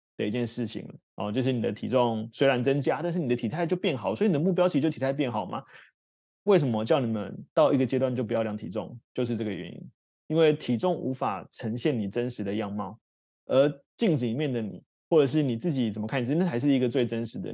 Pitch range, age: 115-155 Hz, 20-39